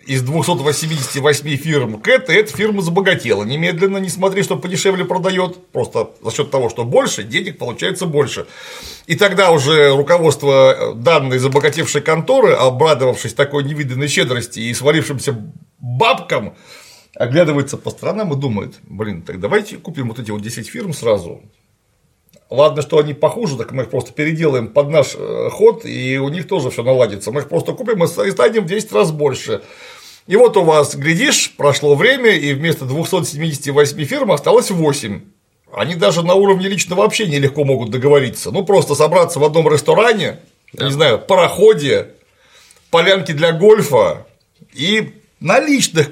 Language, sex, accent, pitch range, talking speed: Russian, male, native, 145-195 Hz, 155 wpm